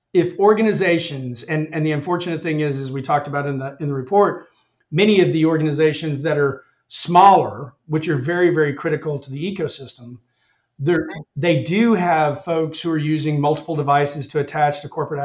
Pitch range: 145-170 Hz